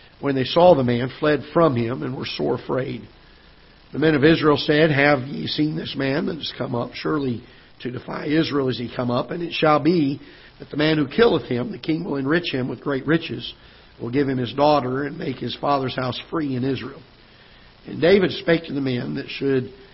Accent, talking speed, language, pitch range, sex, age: American, 220 wpm, English, 130-155 Hz, male, 50-69